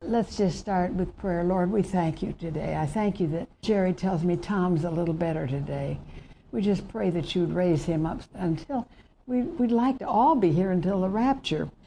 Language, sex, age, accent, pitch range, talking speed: English, female, 60-79, American, 165-200 Hz, 200 wpm